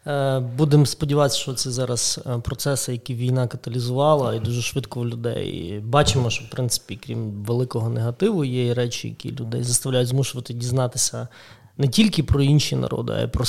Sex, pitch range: male, 120-140 Hz